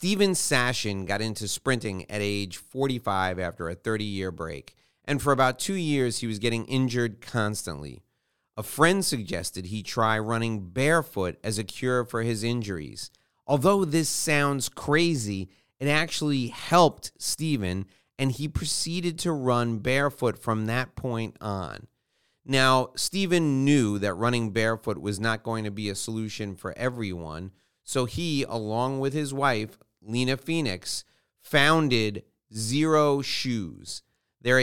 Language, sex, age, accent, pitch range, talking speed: English, male, 30-49, American, 110-145 Hz, 140 wpm